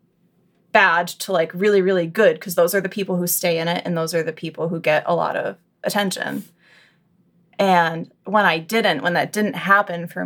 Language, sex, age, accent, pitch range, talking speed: English, female, 20-39, American, 175-215 Hz, 205 wpm